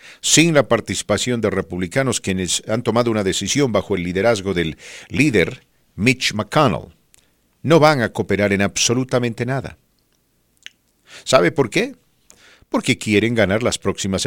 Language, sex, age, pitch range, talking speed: English, male, 50-69, 85-130 Hz, 135 wpm